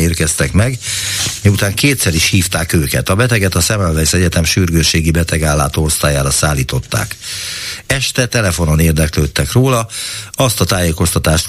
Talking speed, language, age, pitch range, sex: 120 wpm, Hungarian, 60-79, 80-105 Hz, male